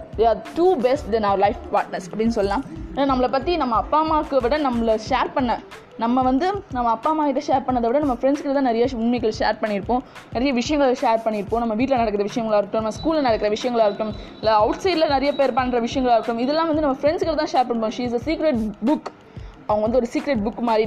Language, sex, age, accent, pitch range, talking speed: Tamil, female, 20-39, native, 225-280 Hz, 215 wpm